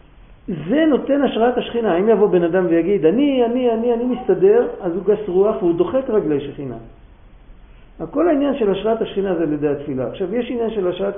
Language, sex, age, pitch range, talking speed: Hebrew, male, 50-69, 175-235 Hz, 190 wpm